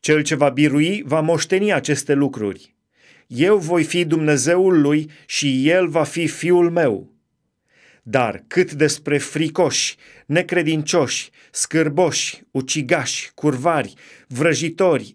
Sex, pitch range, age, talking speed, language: male, 125-165 Hz, 30-49, 110 wpm, Romanian